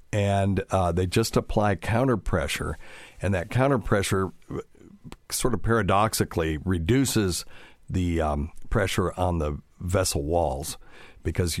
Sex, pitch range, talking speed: male, 80-100 Hz, 120 wpm